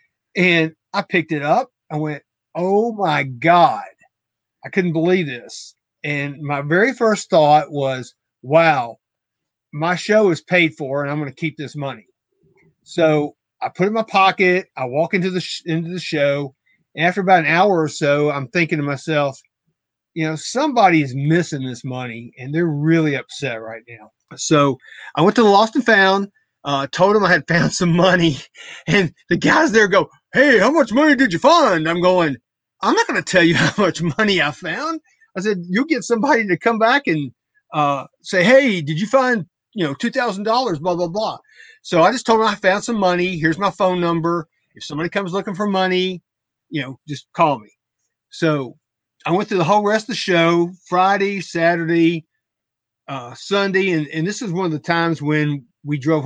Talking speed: 195 wpm